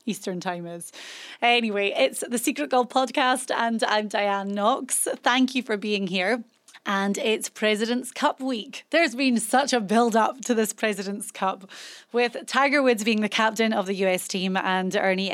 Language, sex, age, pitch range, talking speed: English, female, 30-49, 195-240 Hz, 175 wpm